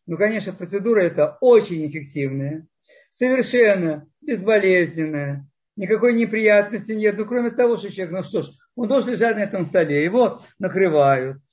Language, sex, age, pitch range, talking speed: Russian, male, 50-69, 160-225 Hz, 140 wpm